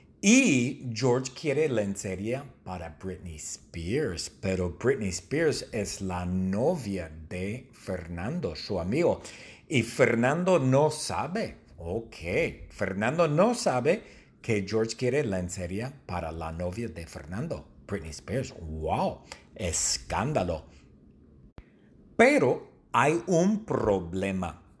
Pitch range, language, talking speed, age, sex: 95-130 Hz, English, 100 wpm, 50-69, male